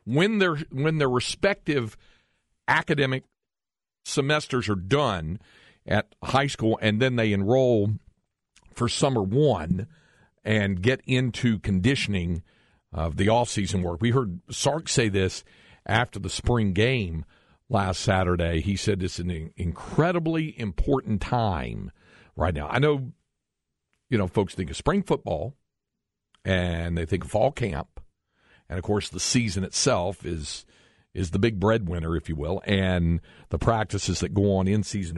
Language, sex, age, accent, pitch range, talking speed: English, male, 50-69, American, 90-130 Hz, 145 wpm